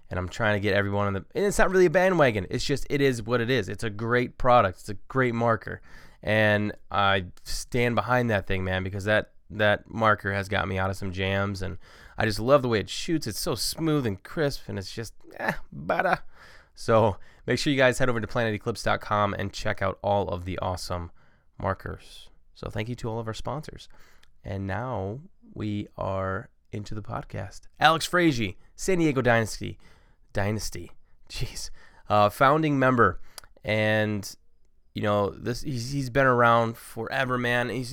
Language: English